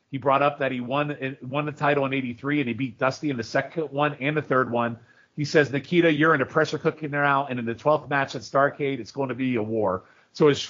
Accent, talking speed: American, 265 wpm